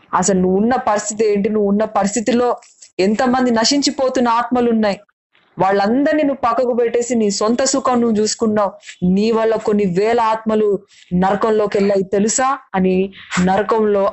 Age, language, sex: 20-39, Telugu, female